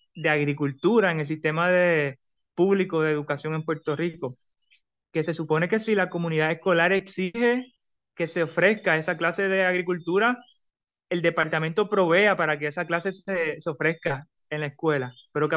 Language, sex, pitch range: Spanish, male, 155-180 Hz